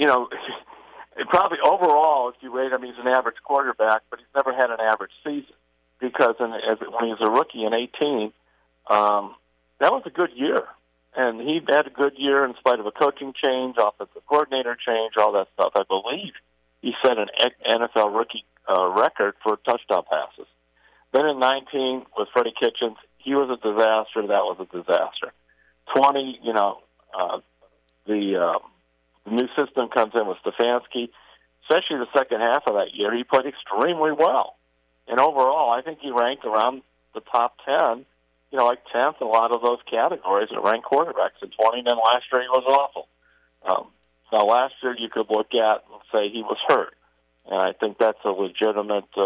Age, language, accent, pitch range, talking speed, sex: 50-69, English, American, 100-130 Hz, 185 wpm, male